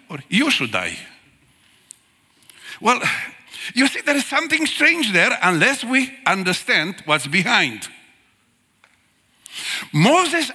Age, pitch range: 50-69, 185-270 Hz